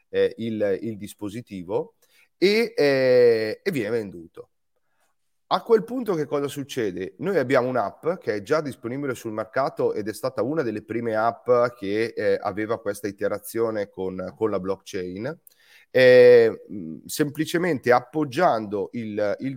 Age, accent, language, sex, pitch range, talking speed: 30-49, native, Italian, male, 100-155 Hz, 130 wpm